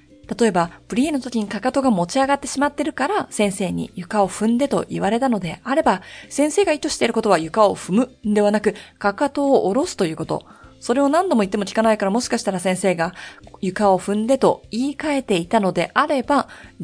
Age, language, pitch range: 20-39, Japanese, 190-280 Hz